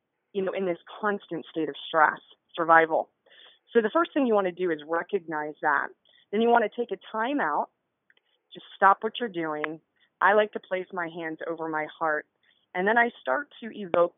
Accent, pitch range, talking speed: American, 165-220 Hz, 205 wpm